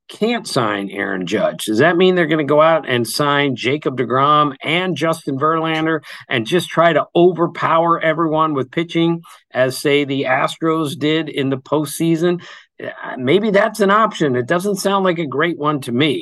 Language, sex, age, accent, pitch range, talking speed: English, male, 50-69, American, 130-165 Hz, 180 wpm